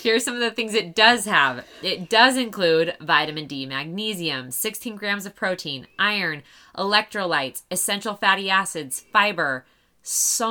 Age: 20-39